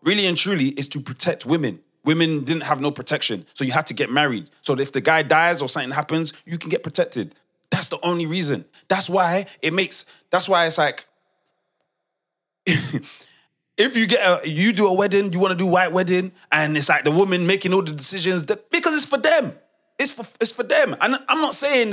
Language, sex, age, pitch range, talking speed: English, male, 30-49, 140-200 Hz, 215 wpm